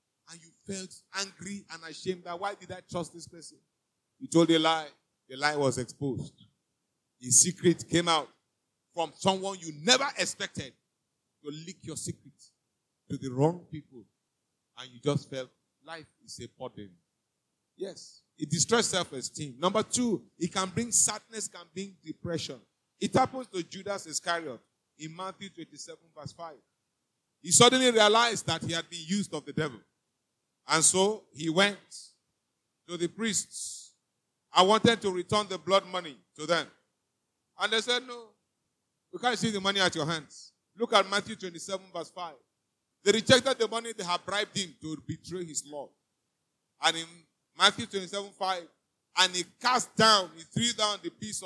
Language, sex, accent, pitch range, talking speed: English, male, Nigerian, 155-200 Hz, 165 wpm